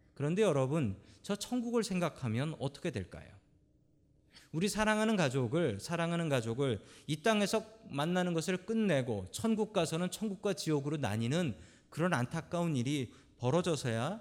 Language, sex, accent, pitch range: Korean, male, native, 115-180 Hz